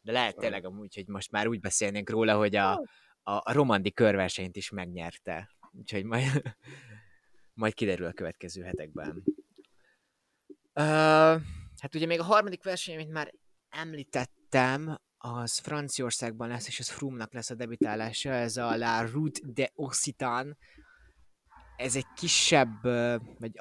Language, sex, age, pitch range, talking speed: Hungarian, male, 20-39, 105-135 Hz, 130 wpm